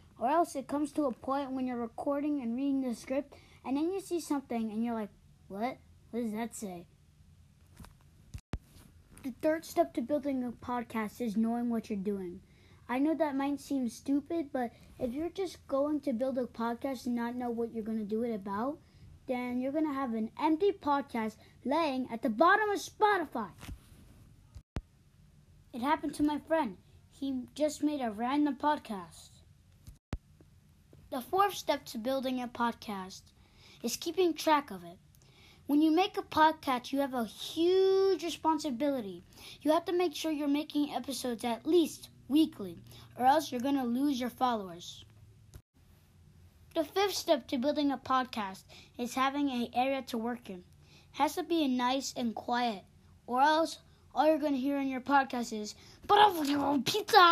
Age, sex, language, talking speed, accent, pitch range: 20-39, female, English, 170 wpm, American, 230-305 Hz